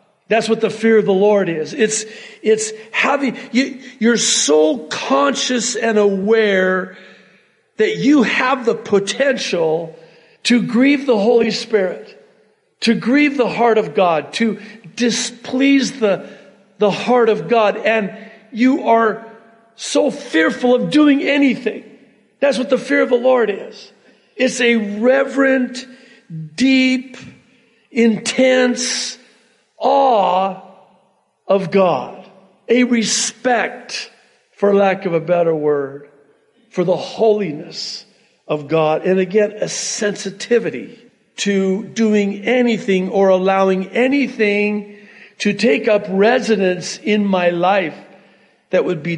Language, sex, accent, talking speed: English, male, American, 120 wpm